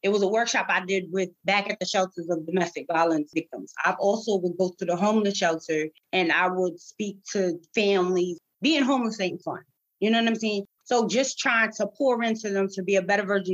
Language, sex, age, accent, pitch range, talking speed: English, female, 30-49, American, 175-215 Hz, 220 wpm